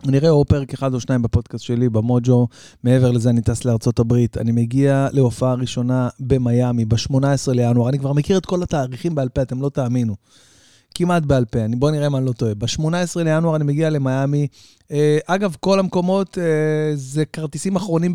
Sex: male